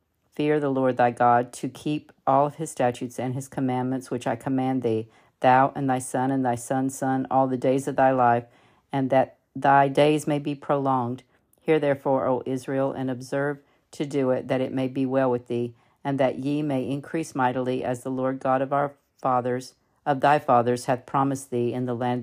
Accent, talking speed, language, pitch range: American, 210 wpm, English, 125-140 Hz